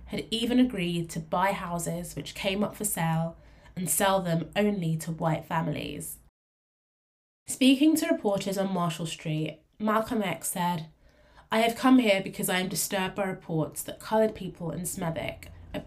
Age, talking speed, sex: 20-39, 165 wpm, female